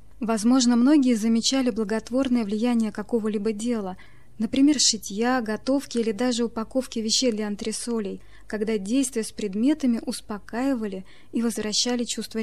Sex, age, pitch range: female, 20-39, 215-255 Hz